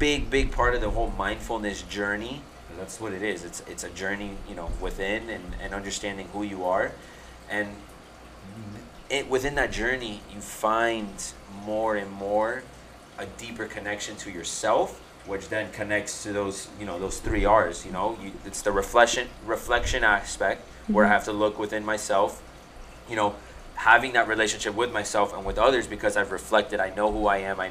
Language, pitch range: English, 100-115 Hz